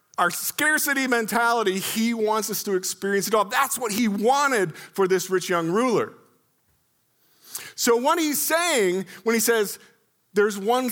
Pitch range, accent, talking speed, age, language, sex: 140-205 Hz, American, 155 wpm, 40-59, English, male